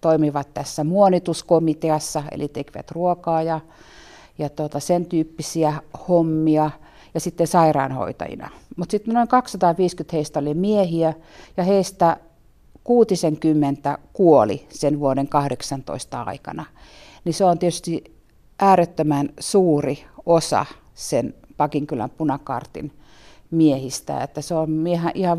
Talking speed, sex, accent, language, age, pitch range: 105 wpm, female, native, Finnish, 50-69, 145-175 Hz